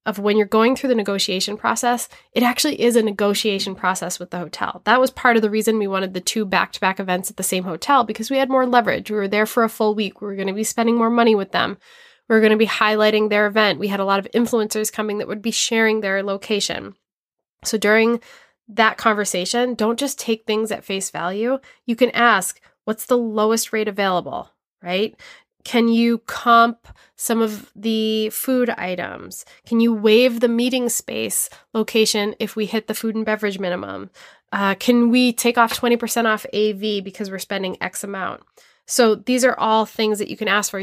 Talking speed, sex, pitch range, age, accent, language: 205 wpm, female, 200-235 Hz, 20-39, American, English